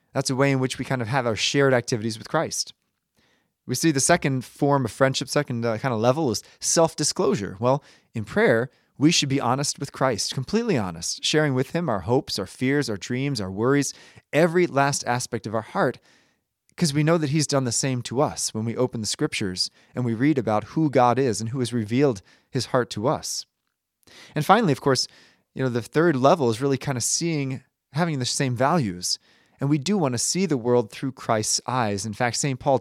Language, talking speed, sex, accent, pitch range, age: English, 220 wpm, male, American, 120-150 Hz, 20-39